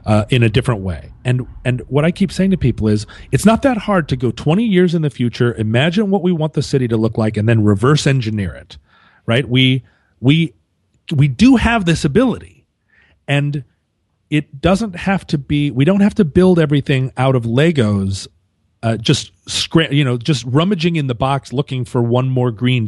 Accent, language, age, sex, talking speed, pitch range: American, English, 40-59, male, 210 wpm, 105-145 Hz